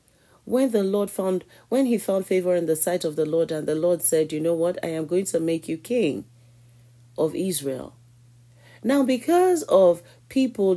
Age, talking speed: 40-59, 190 wpm